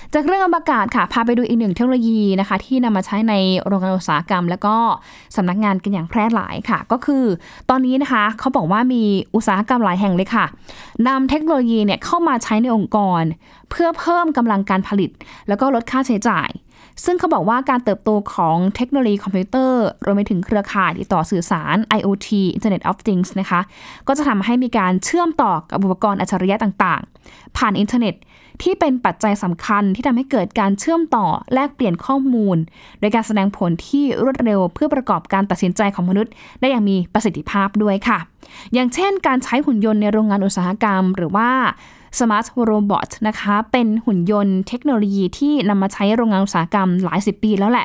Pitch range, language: 195-255 Hz, Thai